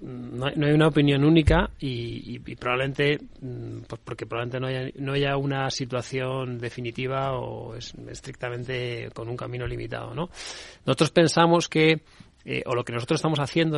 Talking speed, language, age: 170 wpm, Spanish, 30-49